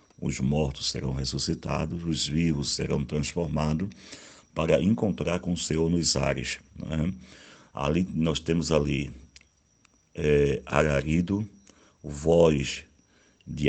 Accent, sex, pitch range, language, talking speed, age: Brazilian, male, 70-85 Hz, Portuguese, 105 wpm, 60-79